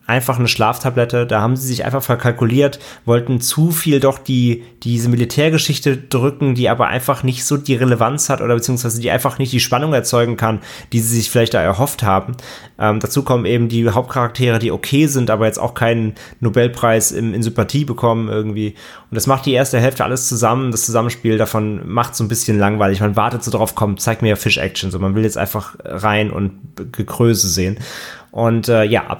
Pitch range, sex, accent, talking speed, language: 110-130 Hz, male, German, 200 wpm, German